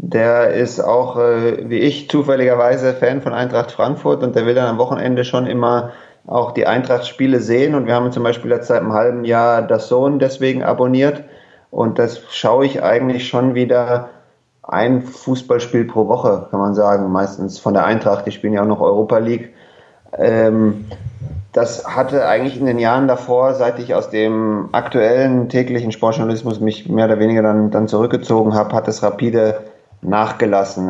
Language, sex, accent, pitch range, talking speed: German, male, German, 105-125 Hz, 165 wpm